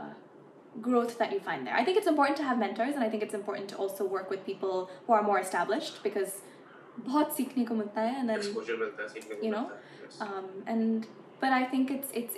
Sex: female